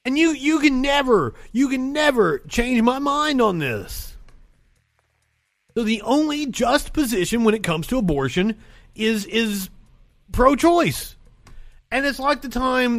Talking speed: 145 wpm